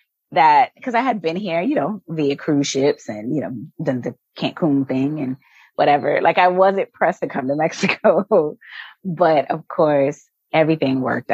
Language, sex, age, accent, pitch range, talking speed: English, female, 20-39, American, 130-170 Hz, 175 wpm